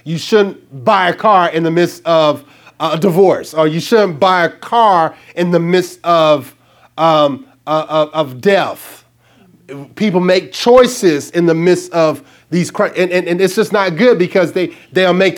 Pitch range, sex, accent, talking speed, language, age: 160-195 Hz, male, American, 170 wpm, English, 30-49